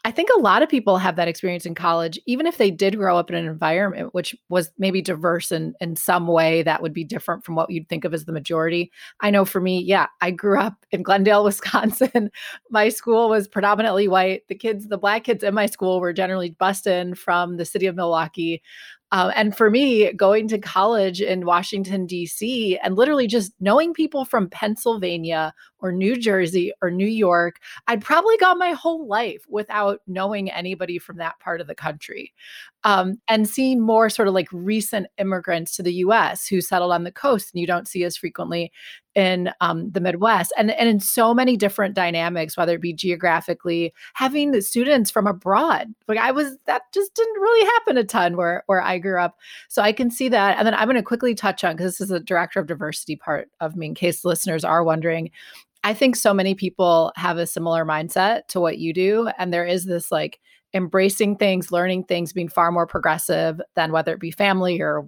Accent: American